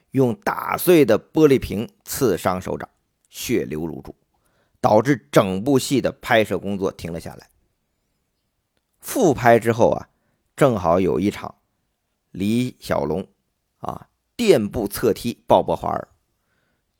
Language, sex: Chinese, male